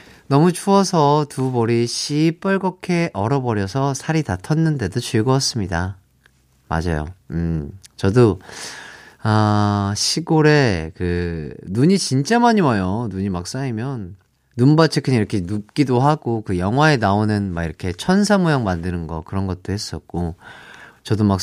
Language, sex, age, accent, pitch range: Korean, male, 30-49, native, 100-160 Hz